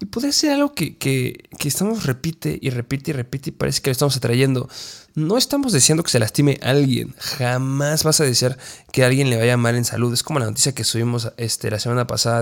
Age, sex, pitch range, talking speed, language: 20-39, male, 115-135 Hz, 235 wpm, Spanish